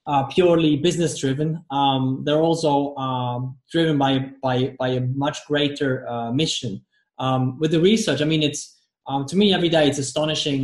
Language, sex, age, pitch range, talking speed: English, male, 20-39, 130-155 Hz, 175 wpm